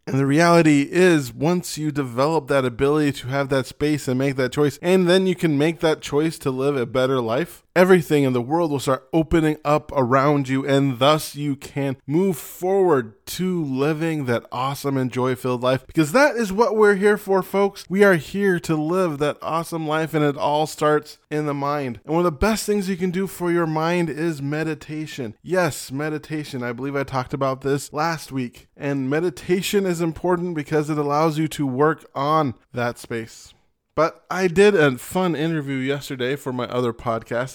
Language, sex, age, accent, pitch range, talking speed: English, male, 20-39, American, 125-160 Hz, 195 wpm